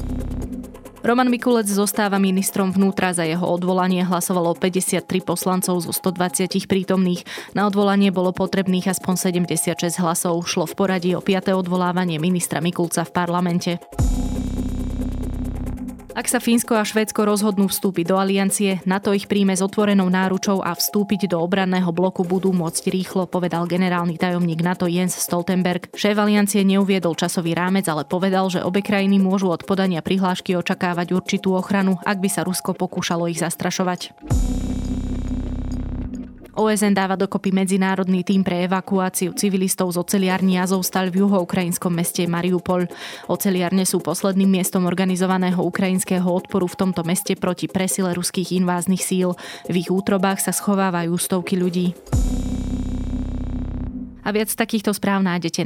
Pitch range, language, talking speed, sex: 175-195 Hz, Slovak, 135 wpm, female